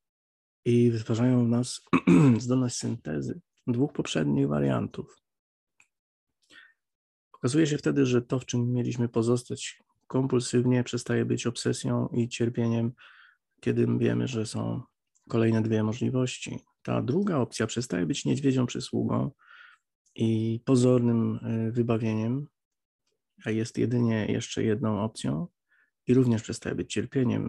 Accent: native